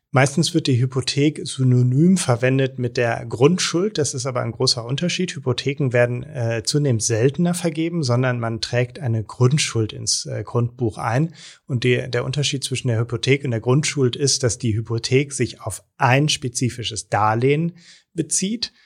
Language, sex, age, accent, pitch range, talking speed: German, male, 30-49, German, 115-140 Hz, 155 wpm